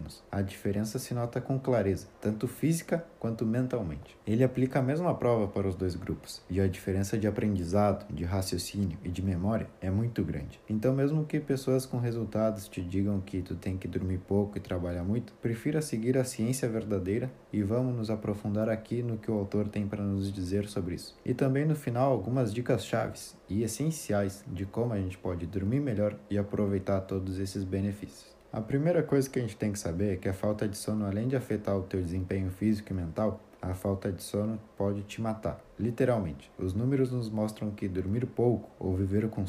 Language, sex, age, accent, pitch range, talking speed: Portuguese, male, 20-39, Brazilian, 95-115 Hz, 200 wpm